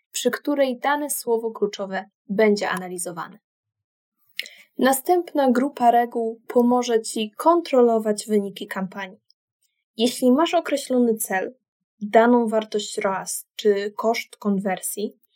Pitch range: 215-275 Hz